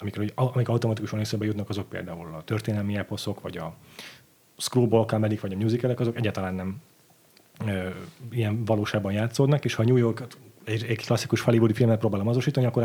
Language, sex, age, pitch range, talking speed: Hungarian, male, 30-49, 105-120 Hz, 155 wpm